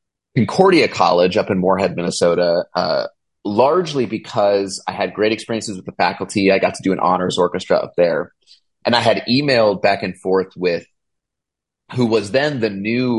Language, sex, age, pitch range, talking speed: English, male, 30-49, 90-110 Hz, 175 wpm